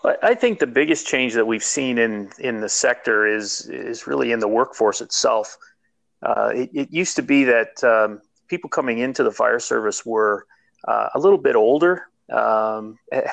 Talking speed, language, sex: 180 wpm, English, male